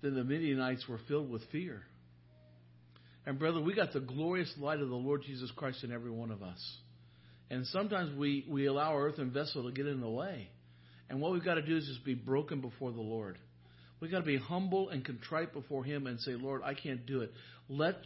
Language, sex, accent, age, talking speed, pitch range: English, male, American, 50-69, 225 wpm, 115-170 Hz